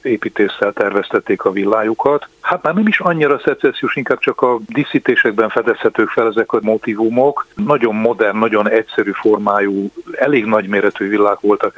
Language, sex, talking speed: Hungarian, male, 145 wpm